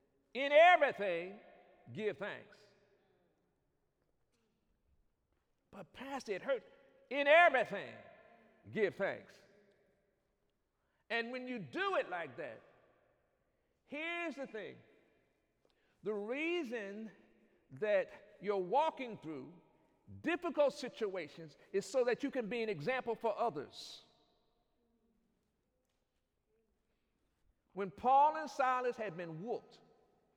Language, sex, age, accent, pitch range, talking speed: English, male, 50-69, American, 190-295 Hz, 95 wpm